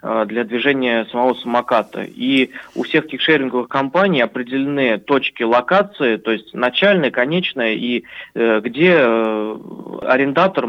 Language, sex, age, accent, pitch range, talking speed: Russian, male, 20-39, native, 115-140 Hz, 120 wpm